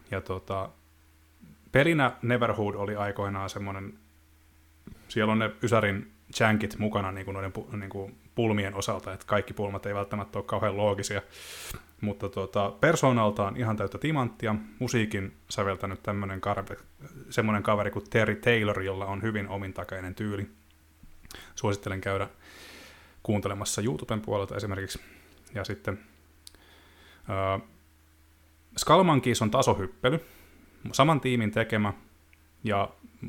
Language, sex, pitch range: Finnish, male, 95-115 Hz